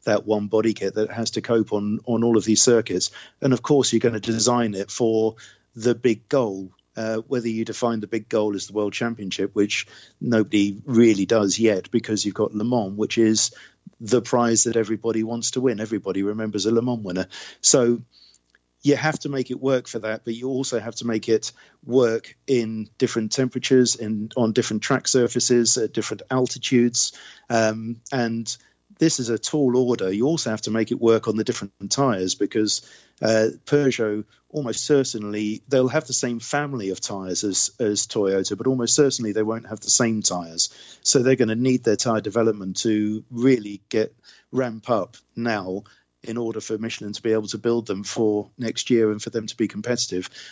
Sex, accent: male, British